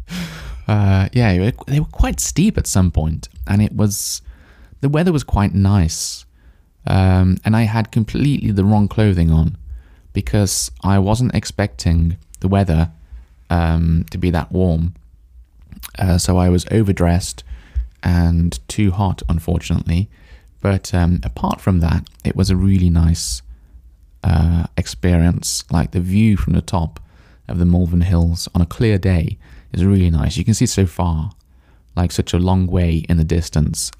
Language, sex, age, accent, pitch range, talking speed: English, male, 20-39, British, 80-100 Hz, 155 wpm